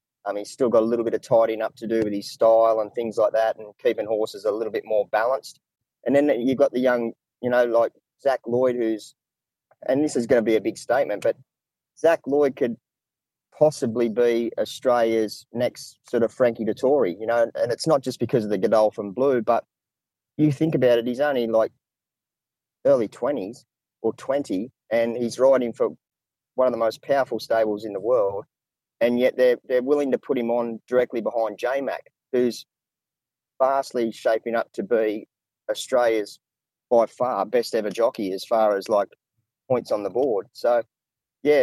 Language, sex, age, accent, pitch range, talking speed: English, male, 30-49, Australian, 110-130 Hz, 190 wpm